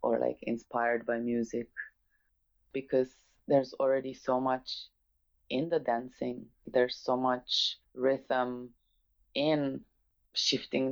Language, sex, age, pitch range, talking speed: English, female, 20-39, 120-130 Hz, 105 wpm